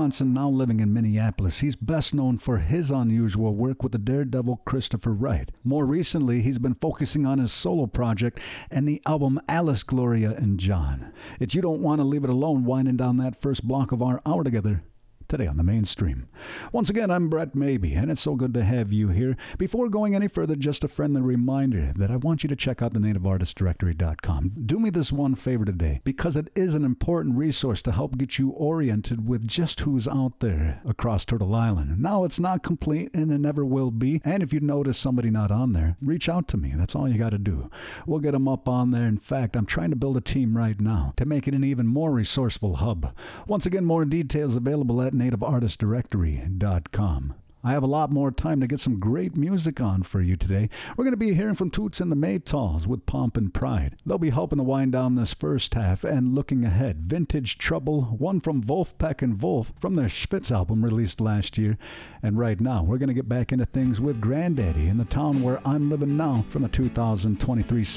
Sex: male